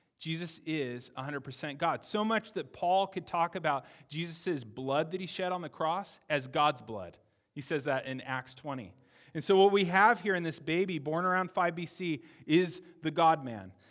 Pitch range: 130-165 Hz